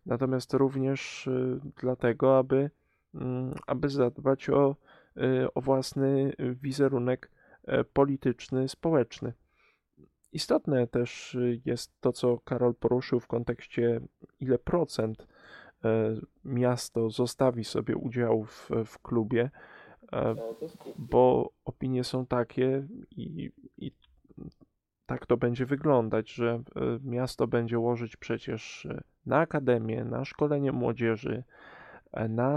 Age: 20-39